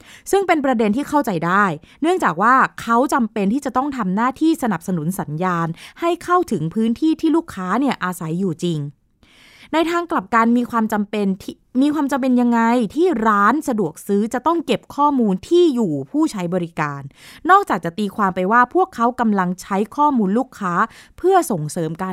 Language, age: Thai, 20-39